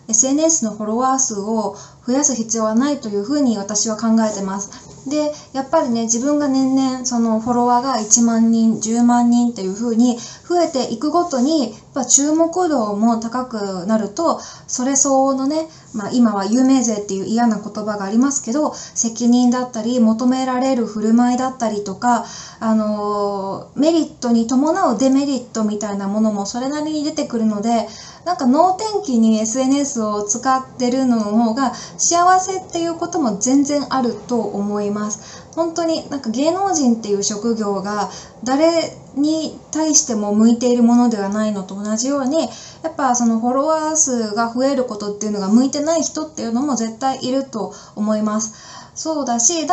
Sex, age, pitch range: female, 20-39, 220-290 Hz